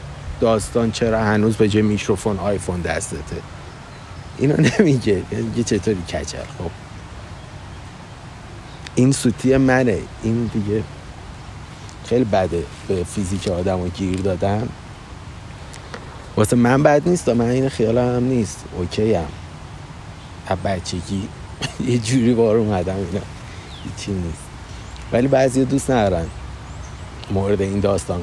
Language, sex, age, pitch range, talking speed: Persian, male, 50-69, 95-120 Hz, 115 wpm